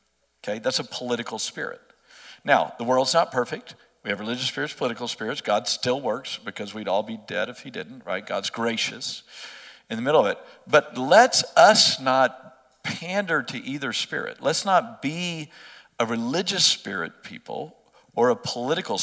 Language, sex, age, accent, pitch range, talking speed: English, male, 50-69, American, 130-175 Hz, 165 wpm